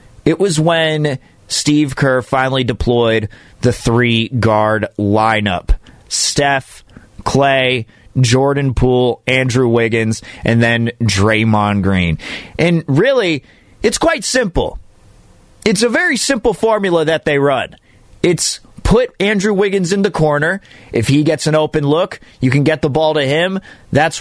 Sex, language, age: male, English, 30-49